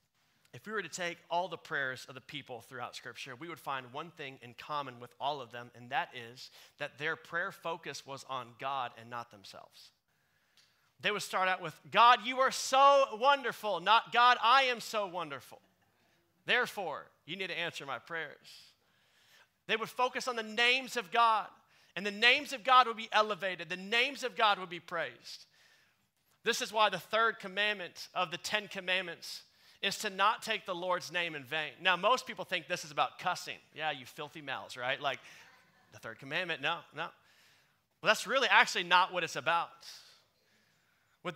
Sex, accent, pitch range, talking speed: male, American, 165-225 Hz, 190 wpm